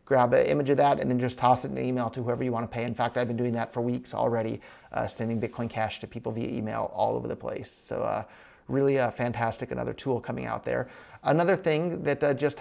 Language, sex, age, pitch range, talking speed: English, male, 30-49, 130-190 Hz, 260 wpm